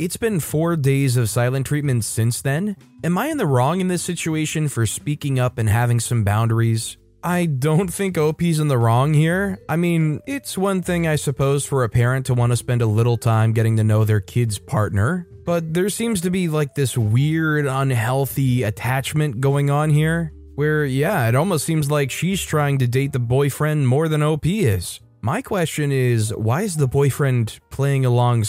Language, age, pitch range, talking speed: English, 20-39, 115-155 Hz, 195 wpm